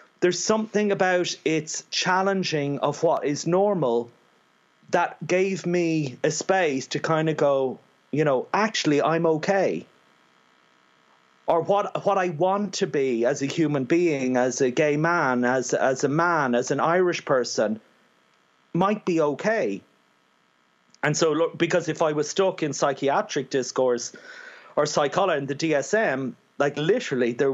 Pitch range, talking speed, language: 120-170 Hz, 145 wpm, English